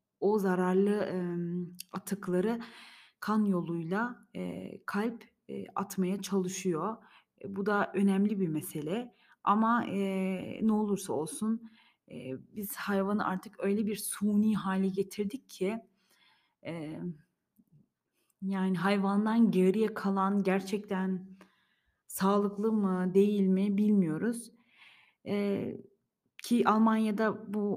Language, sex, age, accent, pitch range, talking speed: Turkish, female, 30-49, native, 190-215 Hz, 100 wpm